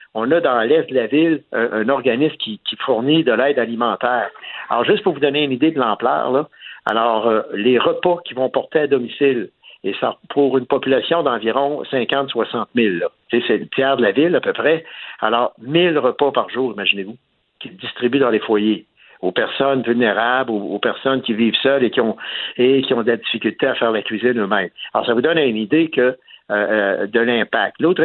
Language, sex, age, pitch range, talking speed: French, male, 60-79, 120-150 Hz, 210 wpm